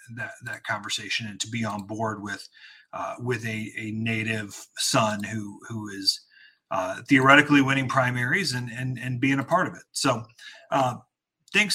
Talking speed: 170 wpm